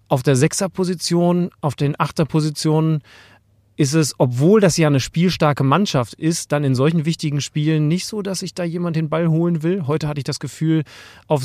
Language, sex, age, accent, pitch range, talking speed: German, male, 30-49, German, 130-155 Hz, 190 wpm